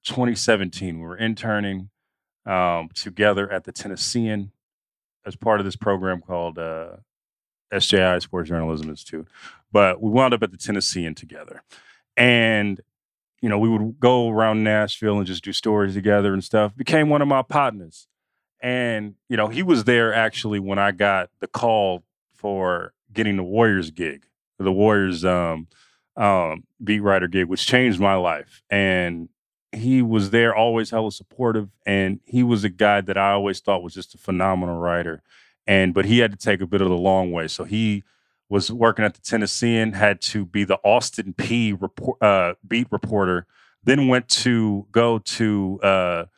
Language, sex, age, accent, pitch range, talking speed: English, male, 30-49, American, 95-115 Hz, 170 wpm